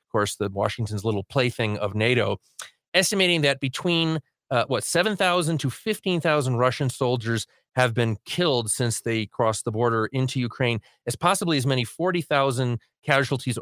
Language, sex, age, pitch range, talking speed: English, male, 30-49, 115-140 Hz, 145 wpm